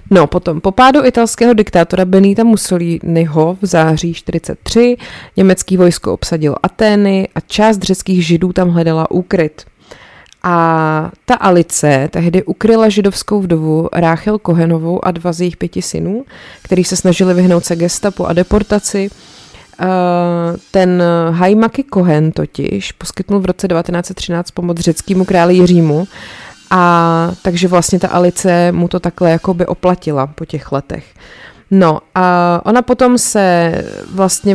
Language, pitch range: Czech, 165-195 Hz